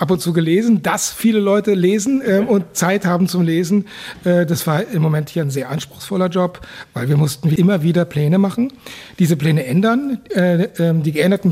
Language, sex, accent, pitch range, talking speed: German, male, German, 160-195 Hz, 200 wpm